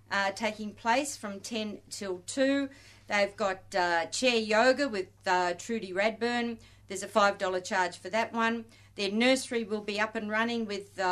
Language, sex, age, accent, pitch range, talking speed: English, female, 50-69, Australian, 195-235 Hz, 180 wpm